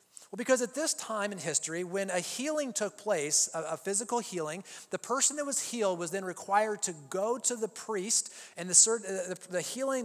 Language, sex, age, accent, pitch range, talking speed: English, male, 30-49, American, 180-230 Hz, 185 wpm